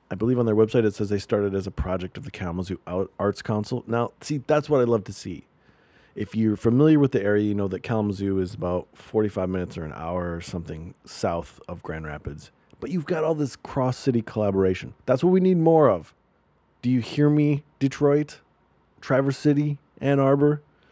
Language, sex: English, male